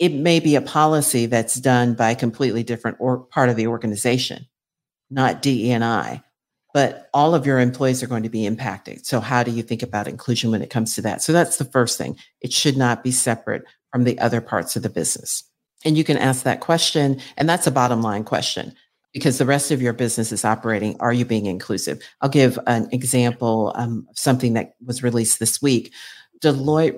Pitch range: 115-135 Hz